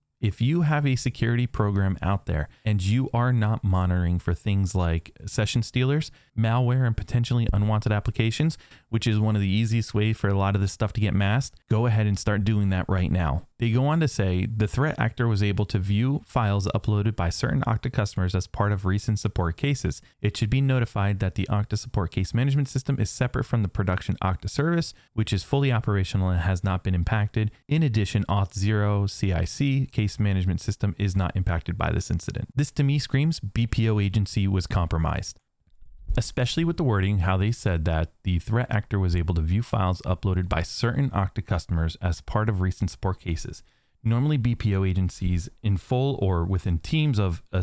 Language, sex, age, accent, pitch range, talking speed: English, male, 30-49, American, 95-120 Hz, 195 wpm